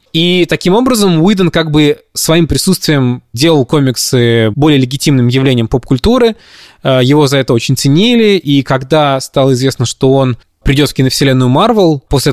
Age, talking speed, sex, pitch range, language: 20-39, 145 wpm, male, 120-145 Hz, Russian